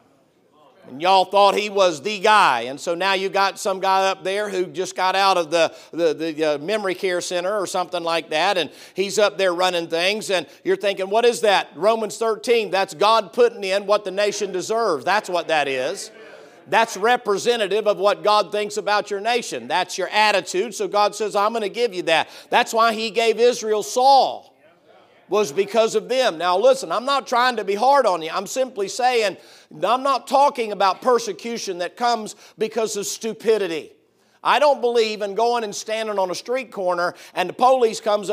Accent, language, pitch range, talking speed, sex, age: American, English, 190-240 Hz, 200 wpm, male, 50-69